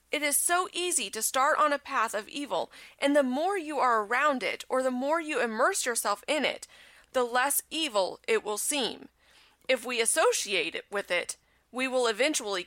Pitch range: 200-290 Hz